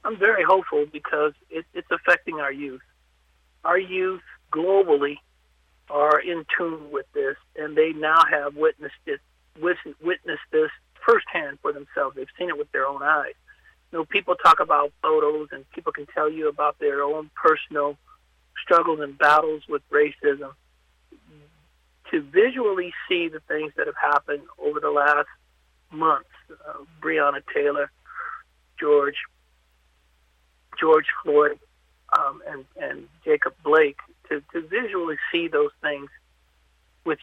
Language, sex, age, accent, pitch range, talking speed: English, male, 50-69, American, 140-210 Hz, 135 wpm